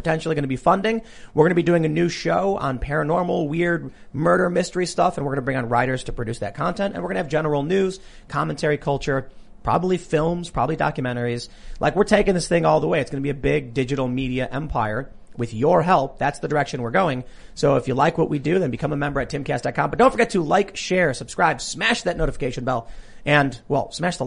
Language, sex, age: English, male, 30-49